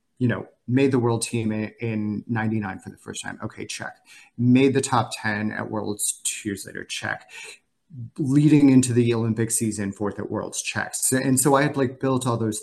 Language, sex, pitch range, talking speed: English, male, 110-135 Hz, 195 wpm